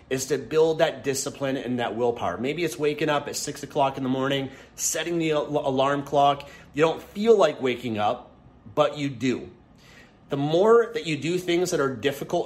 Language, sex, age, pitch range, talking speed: English, male, 30-49, 130-165 Hz, 195 wpm